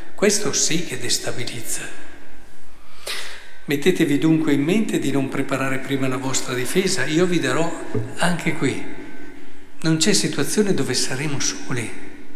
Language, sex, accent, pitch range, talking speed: Italian, male, native, 130-180 Hz, 125 wpm